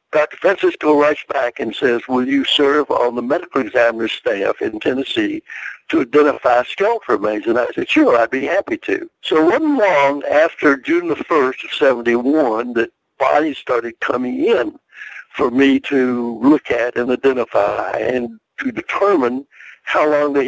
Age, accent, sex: 60-79, American, male